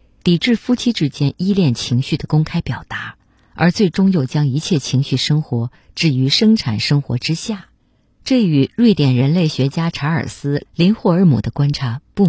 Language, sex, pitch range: Chinese, female, 125-175 Hz